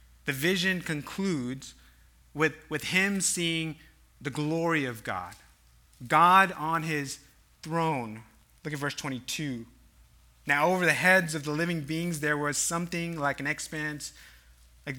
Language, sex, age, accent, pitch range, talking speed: English, male, 30-49, American, 125-165 Hz, 135 wpm